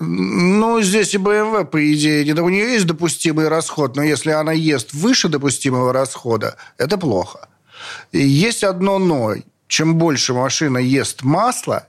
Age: 40-59